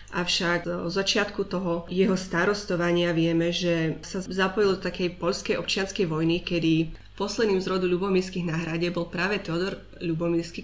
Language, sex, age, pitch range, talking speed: Slovak, female, 20-39, 170-195 Hz, 140 wpm